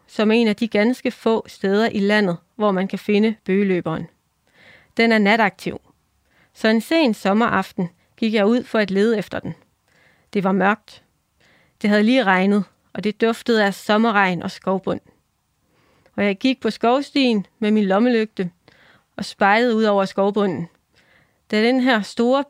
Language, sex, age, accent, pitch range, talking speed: Danish, female, 30-49, native, 200-240 Hz, 165 wpm